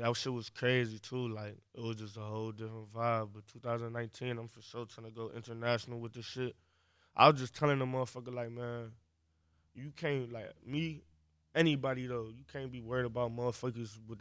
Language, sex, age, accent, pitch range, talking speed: English, male, 20-39, American, 115-125 Hz, 195 wpm